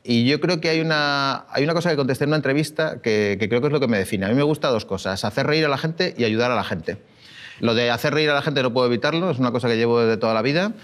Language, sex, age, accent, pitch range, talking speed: Spanish, male, 30-49, Spanish, 115-145 Hz, 325 wpm